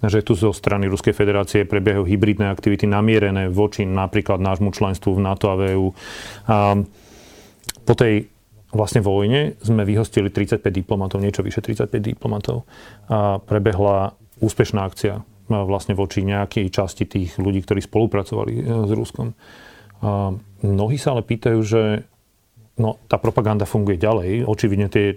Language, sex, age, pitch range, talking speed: Slovak, male, 40-59, 100-110 Hz, 140 wpm